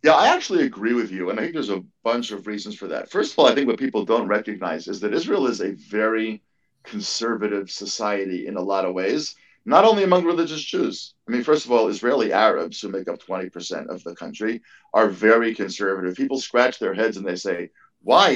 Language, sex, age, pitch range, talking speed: English, male, 50-69, 100-120 Hz, 225 wpm